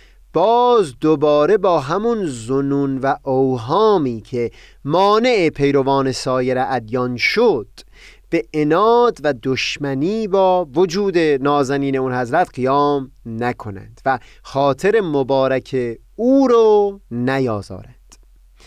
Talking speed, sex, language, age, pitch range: 95 wpm, male, Persian, 30-49, 130-190 Hz